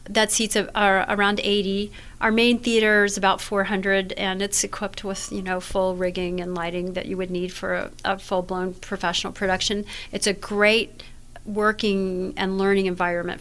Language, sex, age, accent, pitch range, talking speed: English, female, 40-59, American, 180-205 Hz, 170 wpm